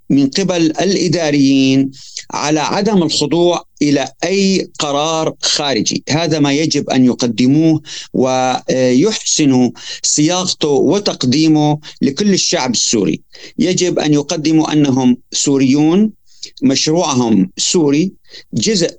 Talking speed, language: 90 wpm, Arabic